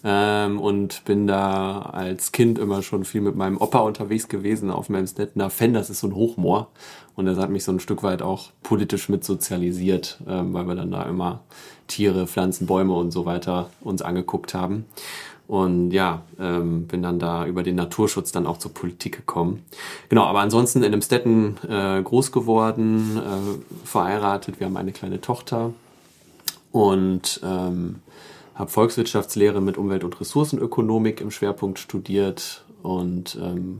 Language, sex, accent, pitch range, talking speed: German, male, German, 90-110 Hz, 165 wpm